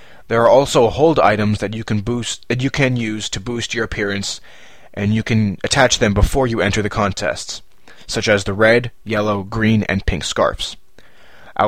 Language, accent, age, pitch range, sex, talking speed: English, American, 20-39, 95-120 Hz, male, 190 wpm